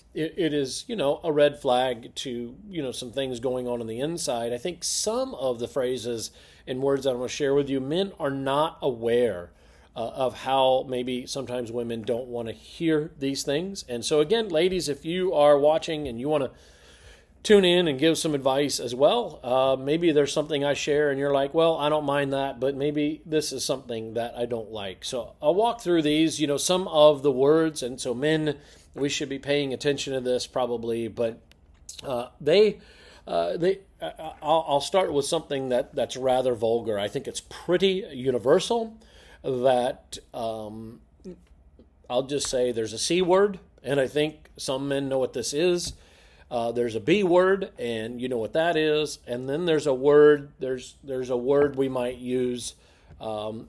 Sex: male